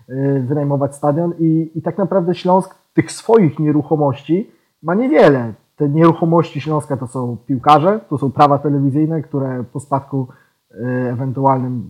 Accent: native